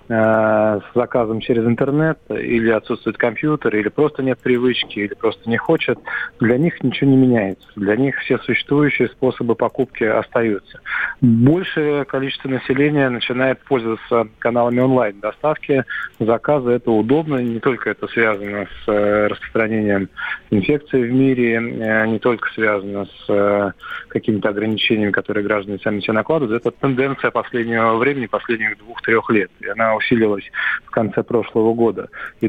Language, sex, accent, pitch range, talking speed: Russian, male, native, 105-130 Hz, 135 wpm